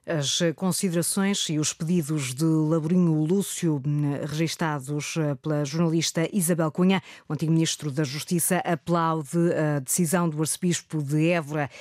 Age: 20-39